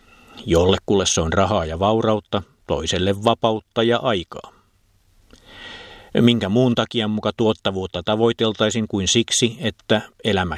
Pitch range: 95-115 Hz